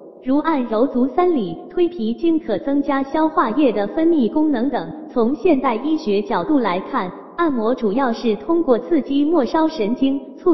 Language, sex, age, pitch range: Chinese, female, 20-39, 220-310 Hz